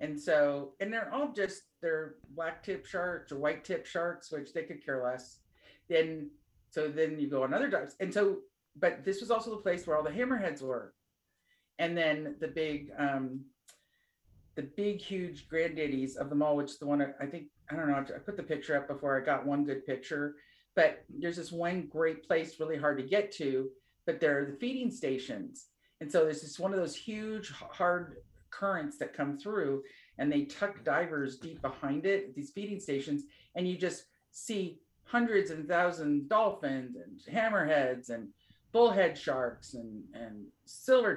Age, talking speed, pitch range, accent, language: 50-69, 190 wpm, 145-200 Hz, American, English